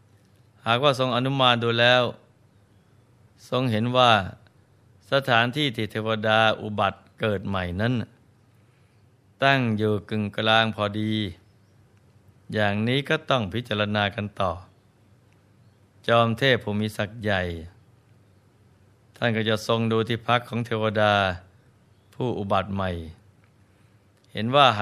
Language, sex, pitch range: Thai, male, 100-120 Hz